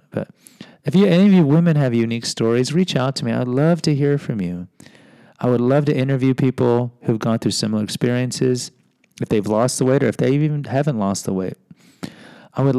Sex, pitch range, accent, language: male, 100-140 Hz, American, English